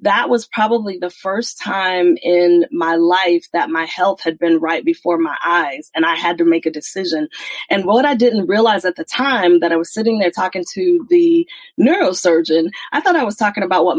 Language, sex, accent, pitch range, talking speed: English, female, American, 180-260 Hz, 210 wpm